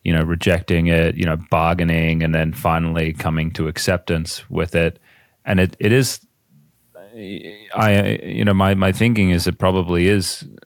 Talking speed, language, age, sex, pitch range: 165 wpm, English, 30-49, male, 80-100 Hz